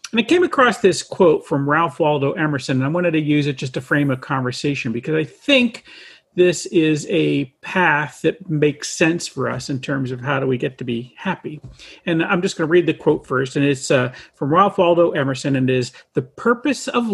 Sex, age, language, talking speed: male, 40-59, English, 230 wpm